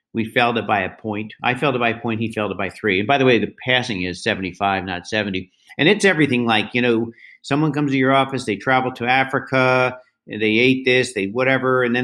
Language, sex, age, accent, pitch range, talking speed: English, male, 50-69, American, 110-140 Hz, 245 wpm